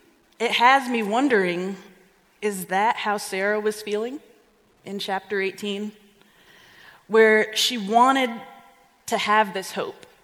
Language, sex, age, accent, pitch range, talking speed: English, female, 30-49, American, 190-220 Hz, 115 wpm